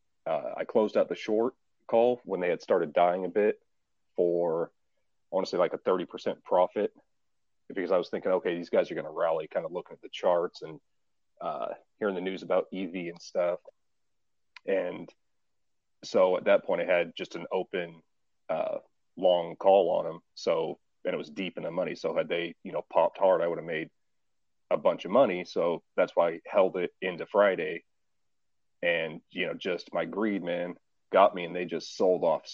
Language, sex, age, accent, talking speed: English, male, 30-49, American, 195 wpm